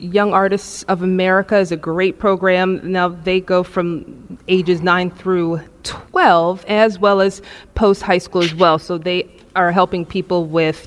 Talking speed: 160 wpm